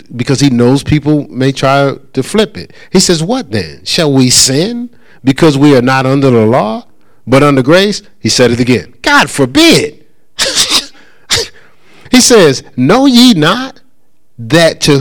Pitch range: 115-175 Hz